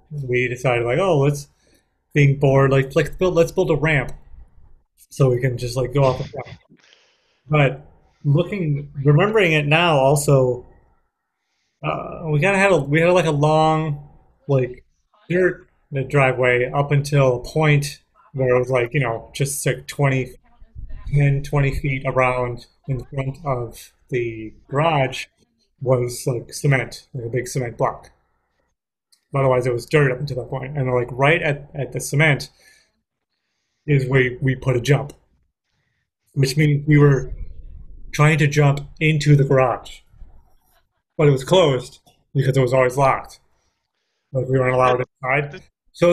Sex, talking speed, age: male, 160 wpm, 30-49